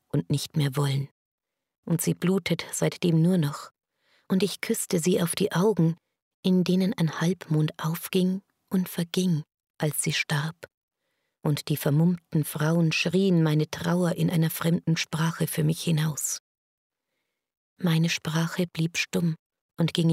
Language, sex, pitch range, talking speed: German, female, 155-185 Hz, 140 wpm